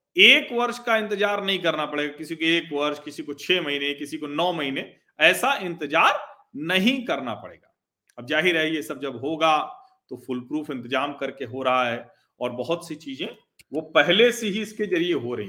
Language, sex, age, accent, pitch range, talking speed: Hindi, male, 40-59, native, 150-215 Hz, 200 wpm